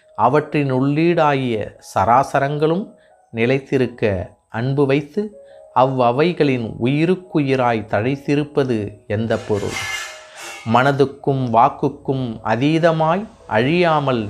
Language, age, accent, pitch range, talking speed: Tamil, 30-49, native, 115-160 Hz, 65 wpm